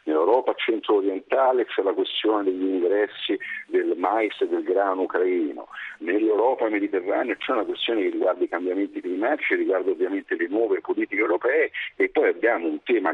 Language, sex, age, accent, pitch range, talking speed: Italian, male, 50-69, native, 335-415 Hz, 165 wpm